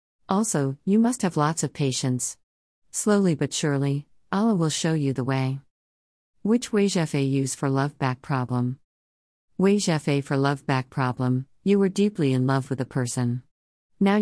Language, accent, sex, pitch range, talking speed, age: English, American, female, 130-180 Hz, 150 wpm, 40-59